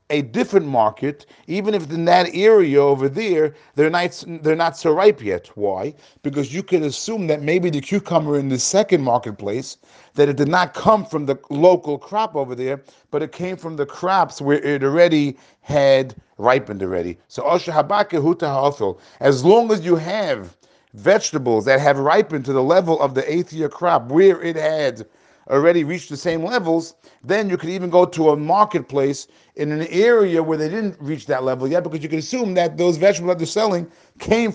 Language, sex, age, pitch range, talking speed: English, male, 40-59, 135-180 Hz, 190 wpm